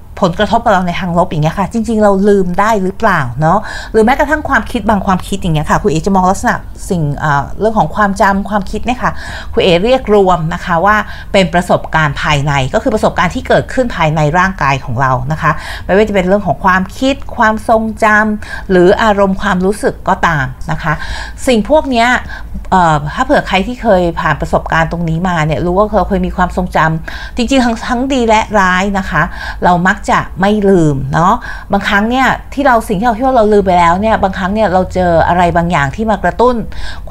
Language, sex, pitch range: Thai, female, 170-220 Hz